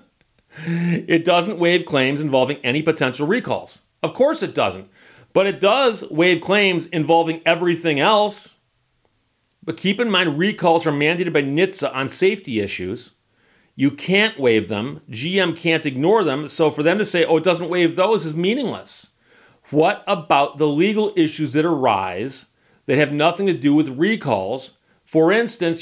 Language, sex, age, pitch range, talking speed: English, male, 40-59, 135-175 Hz, 160 wpm